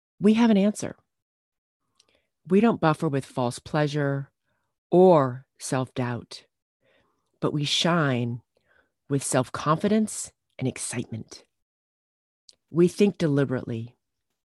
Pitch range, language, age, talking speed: 120-165 Hz, English, 40-59, 90 wpm